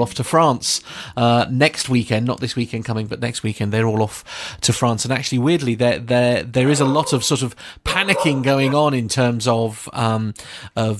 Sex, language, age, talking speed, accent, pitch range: male, English, 40-59, 205 wpm, British, 110-135 Hz